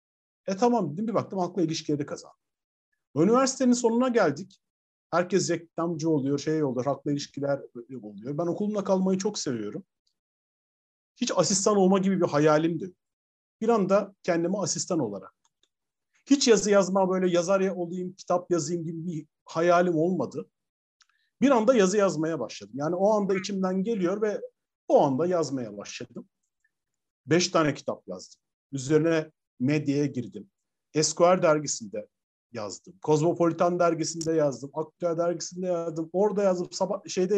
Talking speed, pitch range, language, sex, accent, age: 130 wpm, 155-200 Hz, Turkish, male, native, 50-69